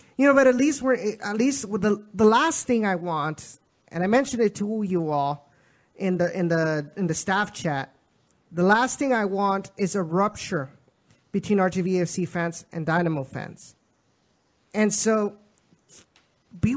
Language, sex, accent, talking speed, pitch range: English, male, American, 170 wpm, 175-220 Hz